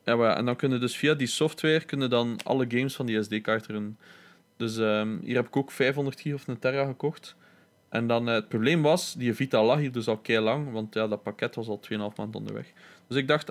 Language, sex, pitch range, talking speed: Dutch, male, 115-135 Hz, 240 wpm